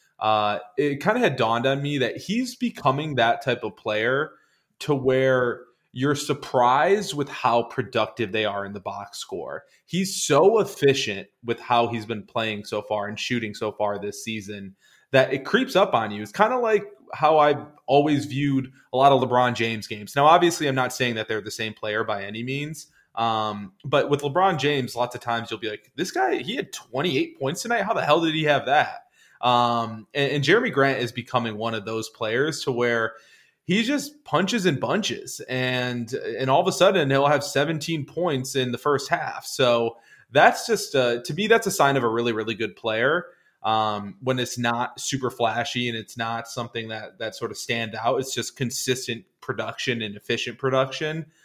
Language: English